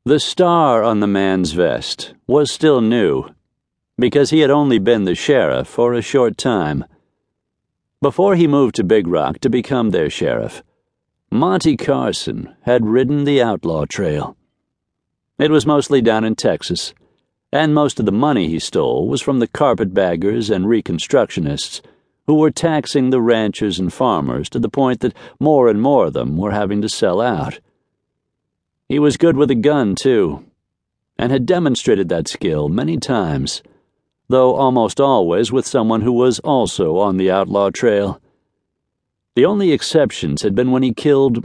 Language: English